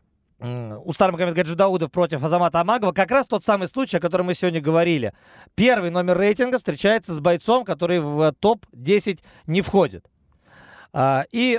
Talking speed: 150 wpm